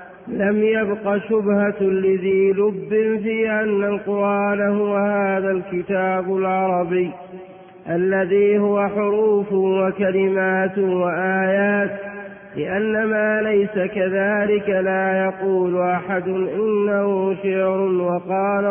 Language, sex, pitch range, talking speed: Arabic, male, 190-205 Hz, 85 wpm